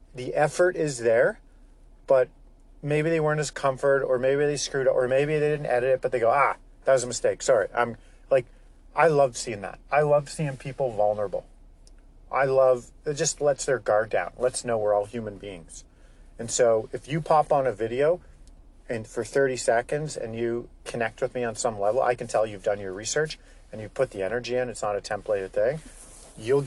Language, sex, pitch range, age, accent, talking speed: English, male, 110-150 Hz, 40-59, American, 210 wpm